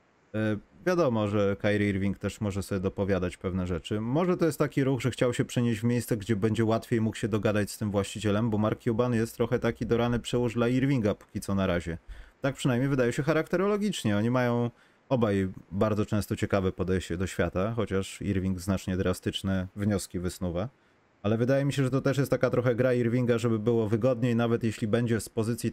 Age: 30-49